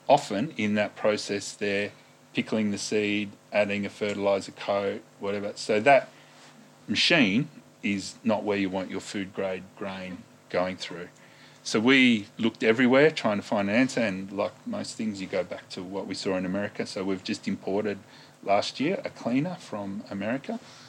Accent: Australian